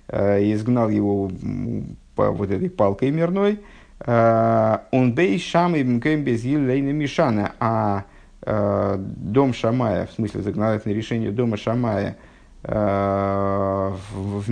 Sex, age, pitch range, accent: male, 50-69, 105-130 Hz, native